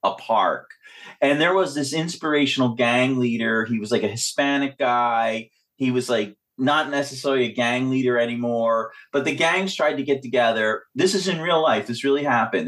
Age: 30-49